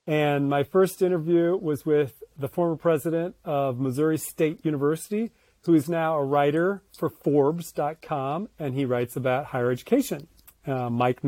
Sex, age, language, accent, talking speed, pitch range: male, 40-59, English, American, 150 wpm, 140-185 Hz